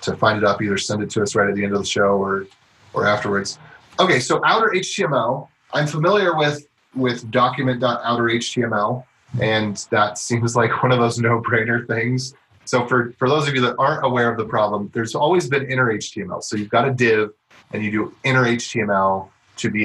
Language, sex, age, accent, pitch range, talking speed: English, male, 30-49, American, 110-135 Hz, 205 wpm